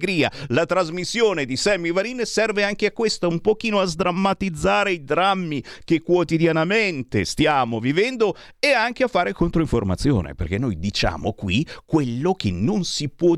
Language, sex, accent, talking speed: Italian, male, native, 150 wpm